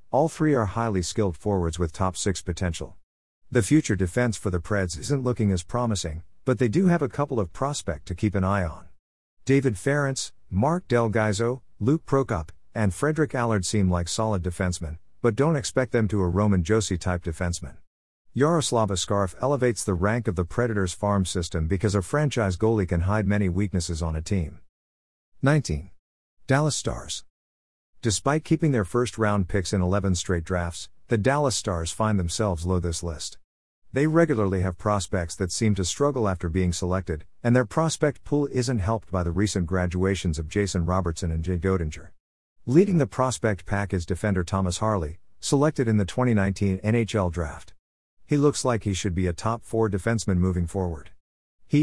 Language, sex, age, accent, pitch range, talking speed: English, male, 50-69, American, 90-120 Hz, 170 wpm